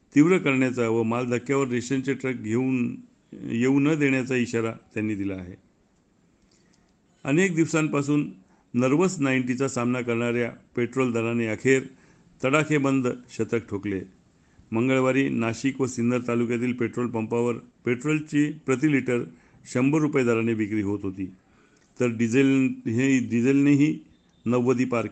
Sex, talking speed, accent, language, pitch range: male, 115 wpm, native, Marathi, 115-140 Hz